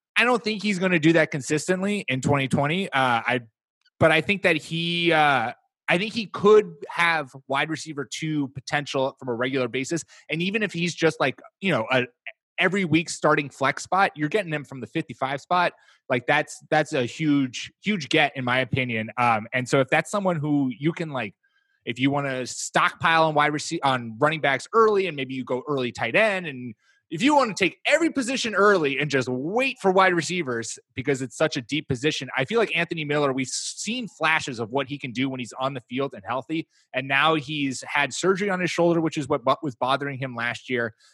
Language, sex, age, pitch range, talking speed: English, male, 20-39, 125-170 Hz, 215 wpm